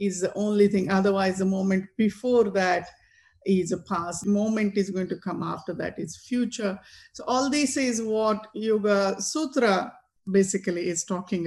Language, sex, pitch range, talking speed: English, female, 185-215 Hz, 160 wpm